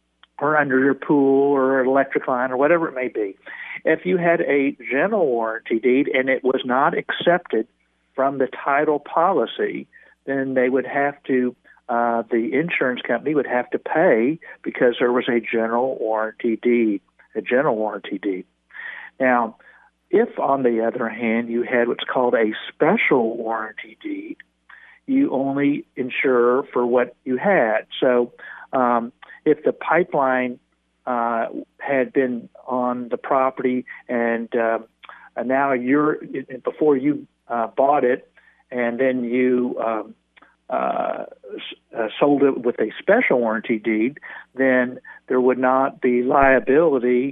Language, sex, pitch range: English, male, 120-140 Hz